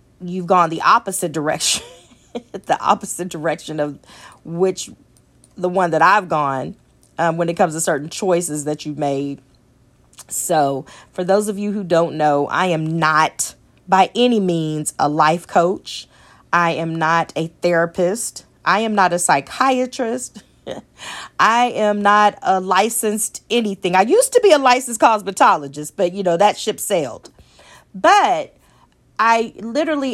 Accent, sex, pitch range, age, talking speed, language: American, female, 155-205 Hz, 40-59, 145 wpm, English